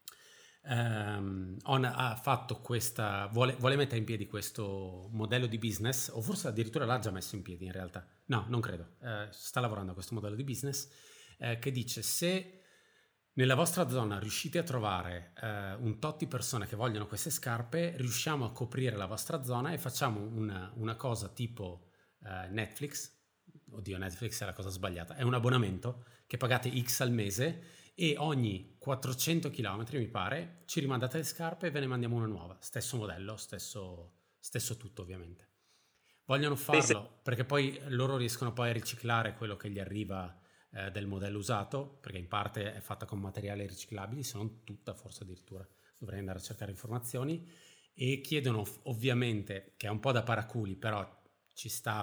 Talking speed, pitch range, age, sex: 175 wpm, 100-130 Hz, 30-49, male